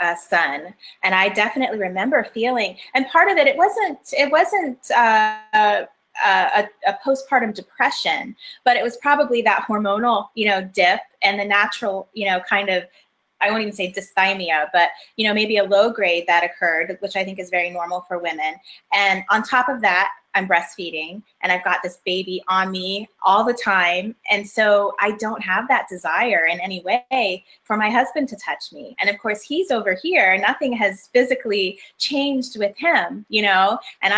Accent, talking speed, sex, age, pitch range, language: American, 190 wpm, female, 20-39, 190-240 Hz, English